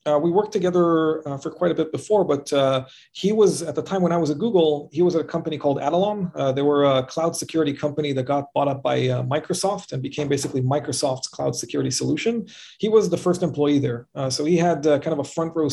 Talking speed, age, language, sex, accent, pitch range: 250 wpm, 40-59, English, male, Canadian, 140-170 Hz